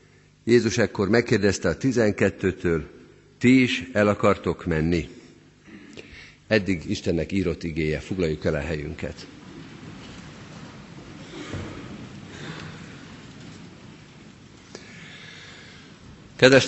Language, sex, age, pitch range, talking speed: Hungarian, male, 50-69, 90-120 Hz, 70 wpm